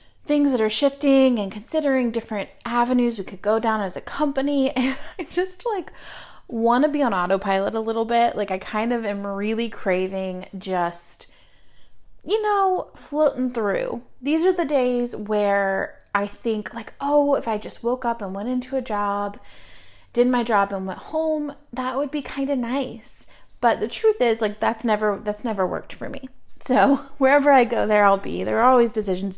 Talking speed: 190 wpm